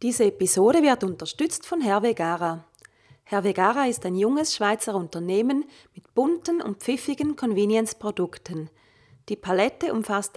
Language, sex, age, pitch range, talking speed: German, female, 30-49, 180-235 Hz, 125 wpm